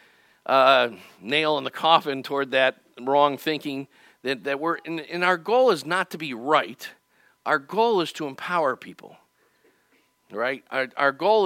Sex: male